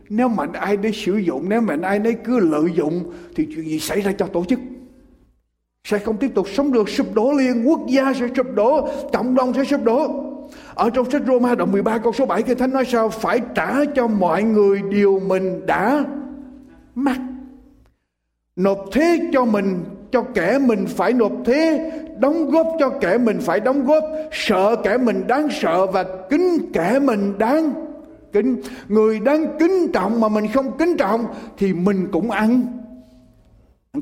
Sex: male